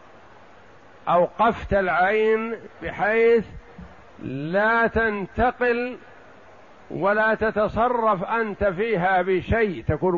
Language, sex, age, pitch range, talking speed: Arabic, male, 60-79, 170-210 Hz, 65 wpm